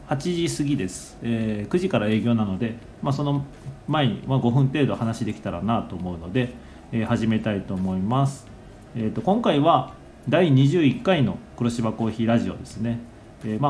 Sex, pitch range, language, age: male, 105-135 Hz, Japanese, 40-59